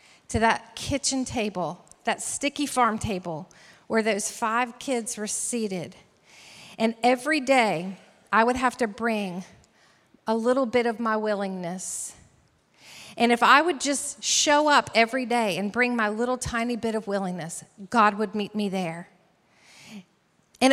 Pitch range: 215-275 Hz